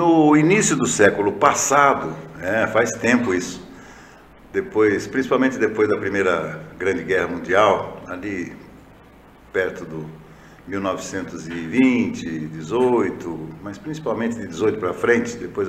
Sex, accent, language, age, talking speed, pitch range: male, Brazilian, Portuguese, 60-79, 110 wpm, 100-140 Hz